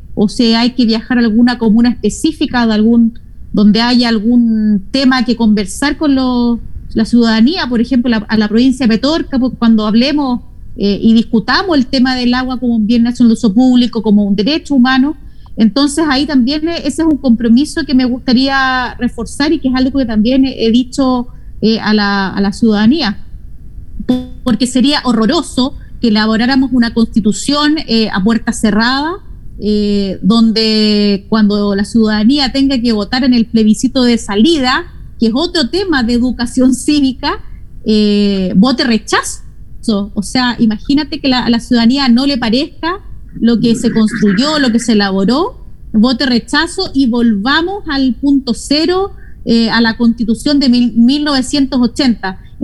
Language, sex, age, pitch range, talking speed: Spanish, female, 30-49, 225-270 Hz, 160 wpm